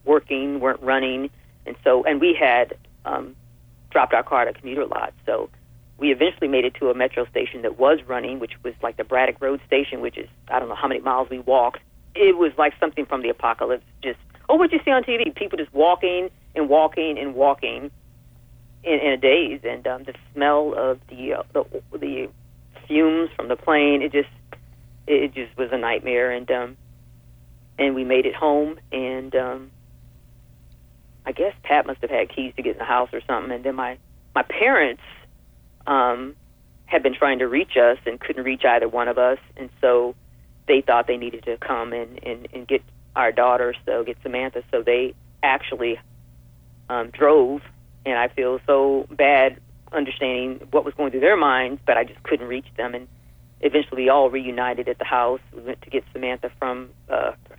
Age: 40-59